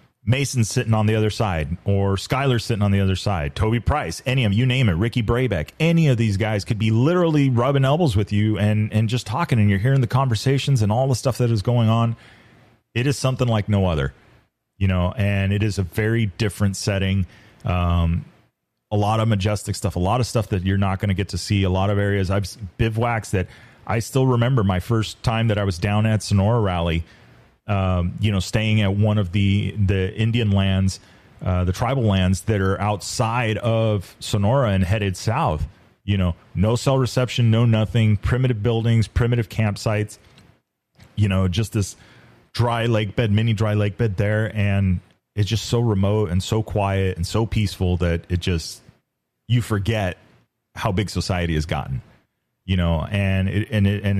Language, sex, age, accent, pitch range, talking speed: English, male, 30-49, American, 95-115 Hz, 195 wpm